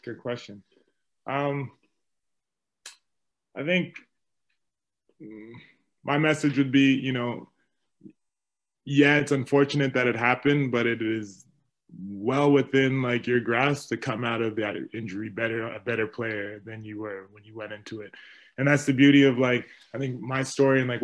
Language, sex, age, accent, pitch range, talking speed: English, male, 20-39, American, 110-135 Hz, 155 wpm